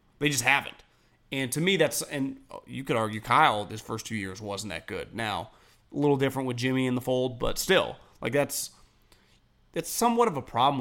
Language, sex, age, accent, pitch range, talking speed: English, male, 30-49, American, 115-140 Hz, 205 wpm